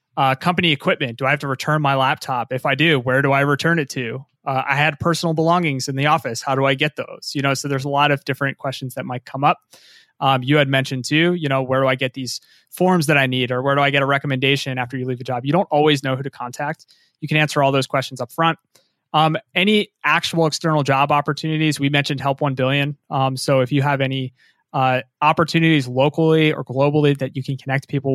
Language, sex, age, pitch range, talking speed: English, male, 20-39, 130-150 Hz, 245 wpm